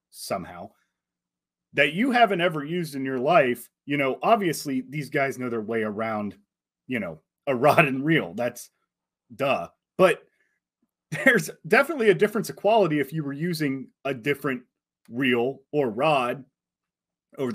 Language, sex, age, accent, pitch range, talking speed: English, male, 30-49, American, 130-175 Hz, 145 wpm